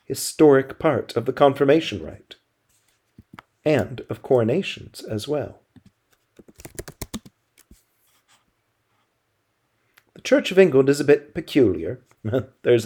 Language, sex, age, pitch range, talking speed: English, male, 50-69, 110-140 Hz, 95 wpm